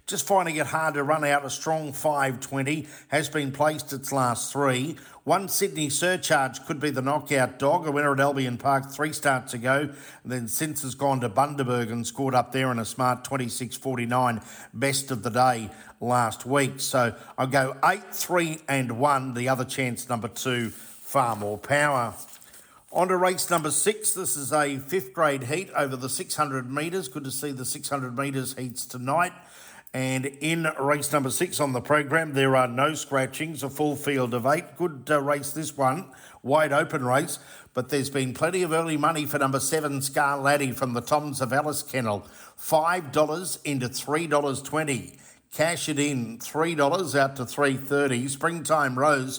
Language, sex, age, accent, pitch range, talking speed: English, male, 50-69, Australian, 130-150 Hz, 175 wpm